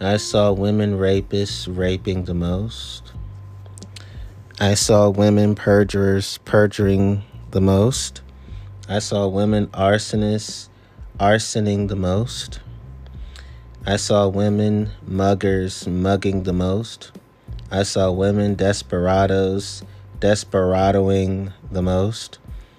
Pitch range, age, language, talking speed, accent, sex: 95-100 Hz, 20-39, English, 90 wpm, American, male